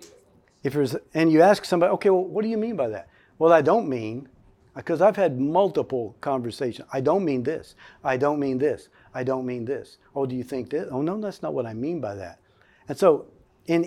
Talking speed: 225 wpm